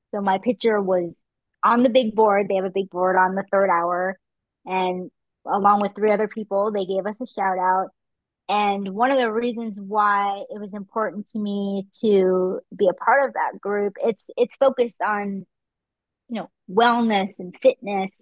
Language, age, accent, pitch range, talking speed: English, 30-49, American, 195-235 Hz, 185 wpm